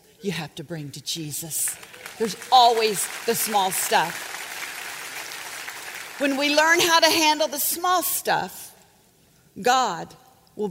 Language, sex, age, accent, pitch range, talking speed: English, female, 40-59, American, 210-310 Hz, 125 wpm